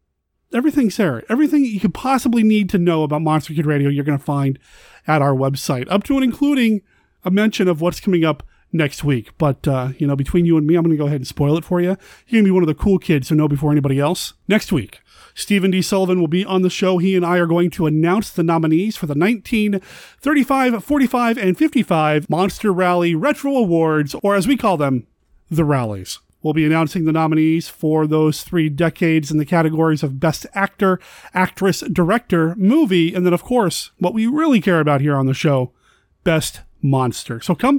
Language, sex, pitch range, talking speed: English, male, 160-210 Hz, 215 wpm